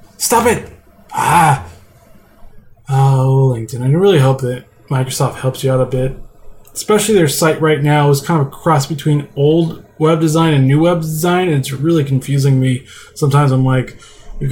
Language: English